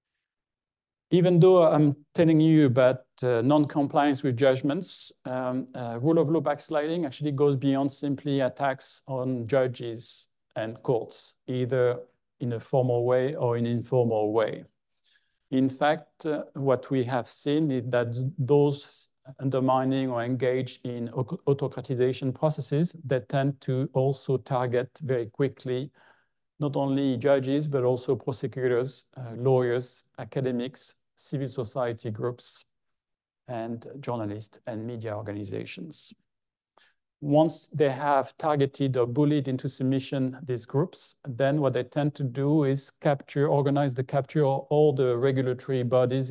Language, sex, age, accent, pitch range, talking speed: English, male, 40-59, French, 125-140 Hz, 130 wpm